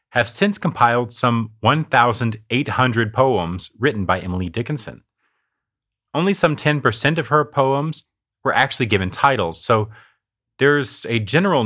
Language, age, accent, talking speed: English, 30-49, American, 125 wpm